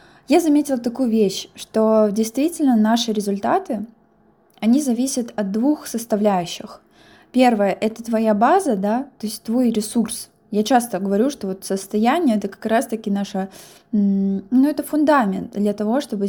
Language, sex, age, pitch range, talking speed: Russian, female, 20-39, 200-240 Hz, 145 wpm